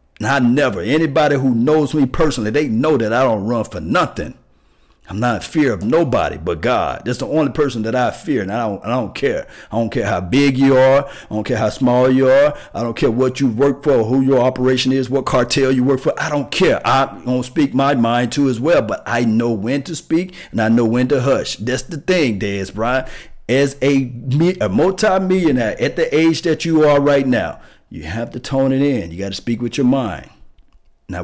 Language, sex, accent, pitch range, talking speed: English, male, American, 100-135 Hz, 235 wpm